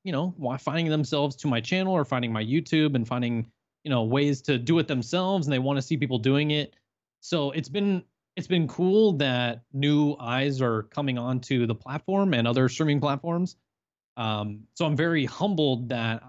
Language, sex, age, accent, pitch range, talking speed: English, male, 20-39, American, 120-150 Hz, 195 wpm